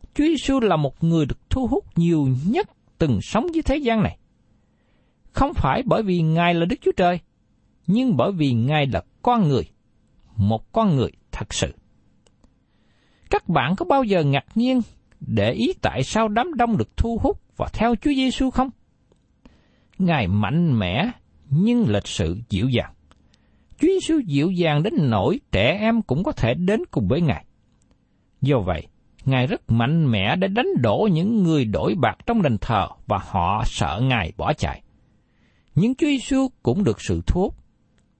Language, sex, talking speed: Vietnamese, male, 175 wpm